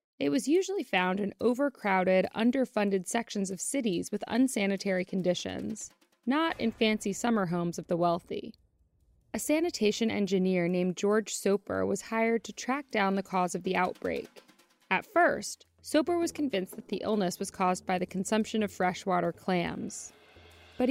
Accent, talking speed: American, 155 wpm